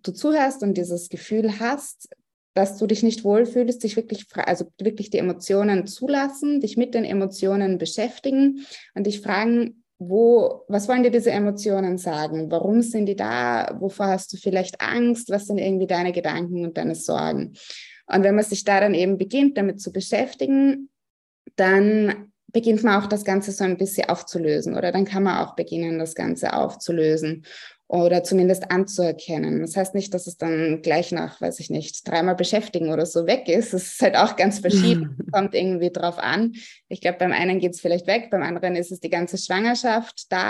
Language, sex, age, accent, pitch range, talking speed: German, female, 20-39, German, 175-220 Hz, 190 wpm